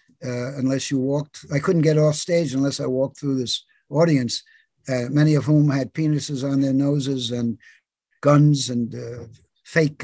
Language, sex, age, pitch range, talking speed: English, male, 60-79, 130-160 Hz, 175 wpm